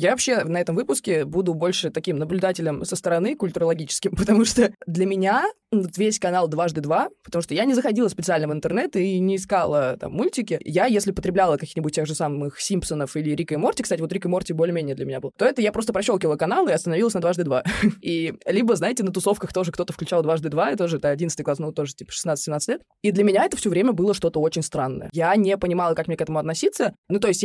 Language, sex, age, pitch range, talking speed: Russian, female, 20-39, 160-200 Hz, 225 wpm